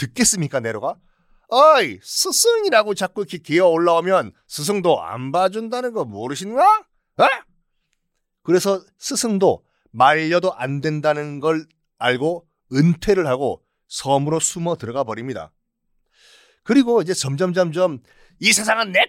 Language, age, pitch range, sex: Korean, 40-59, 140-230 Hz, male